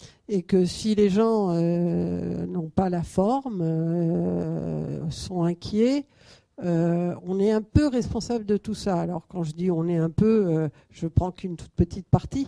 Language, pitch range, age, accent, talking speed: French, 175-220 Hz, 50-69, French, 180 wpm